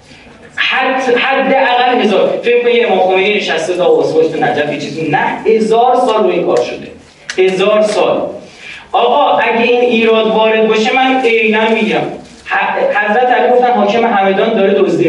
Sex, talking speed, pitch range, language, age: male, 145 wpm, 165-250 Hz, Persian, 30-49